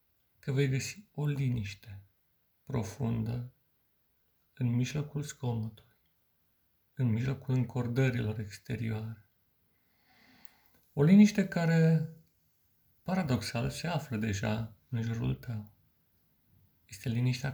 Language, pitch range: Romanian, 110-140 Hz